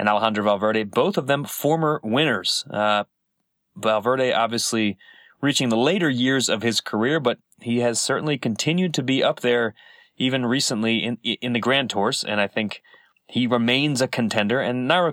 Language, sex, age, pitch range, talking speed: English, male, 30-49, 105-135 Hz, 170 wpm